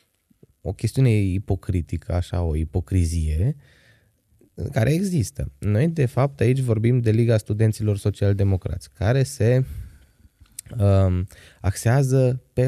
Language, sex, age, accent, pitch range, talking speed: Romanian, male, 20-39, native, 90-115 Hz, 105 wpm